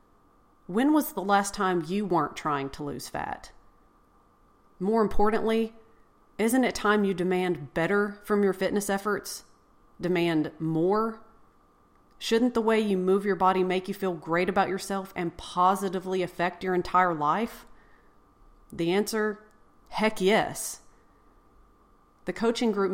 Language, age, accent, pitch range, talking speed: English, 40-59, American, 170-200 Hz, 135 wpm